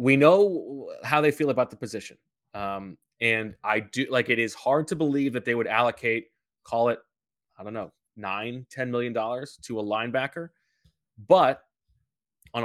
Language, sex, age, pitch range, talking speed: English, male, 20-39, 115-140 Hz, 165 wpm